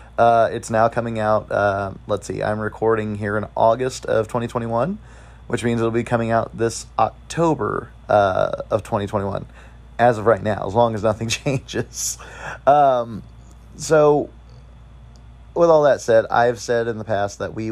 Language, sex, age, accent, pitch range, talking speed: English, male, 30-49, American, 100-120 Hz, 165 wpm